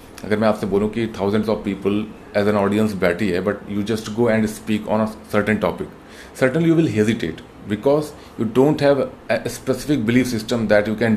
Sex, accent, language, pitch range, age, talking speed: male, native, Hindi, 105-130 Hz, 30-49, 200 wpm